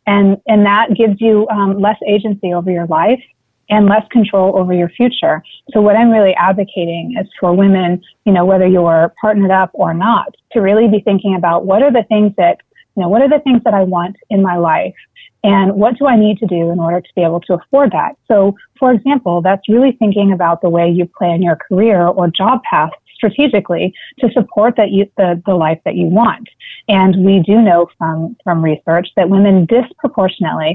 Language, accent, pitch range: English, American, 180-225 Hz